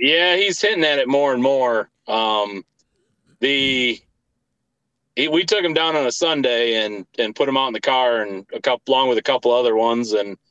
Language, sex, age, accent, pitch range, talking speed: English, male, 30-49, American, 115-170 Hz, 200 wpm